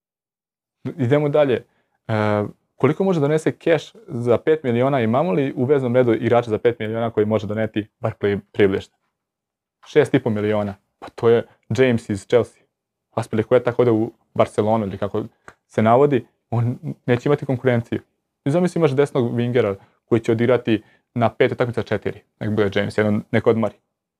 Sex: male